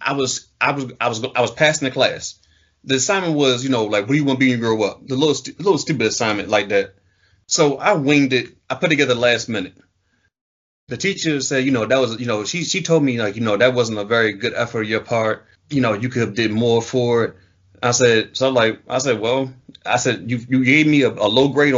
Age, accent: 30-49, American